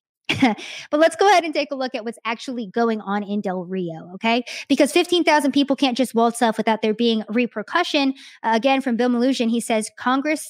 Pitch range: 225-270 Hz